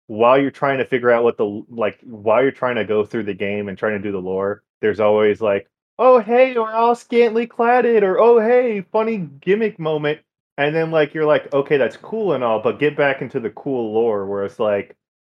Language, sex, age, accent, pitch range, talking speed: English, male, 20-39, American, 100-140 Hz, 230 wpm